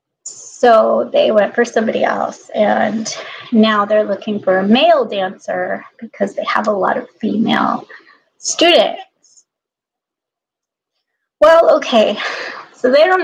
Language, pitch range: English, 205-240 Hz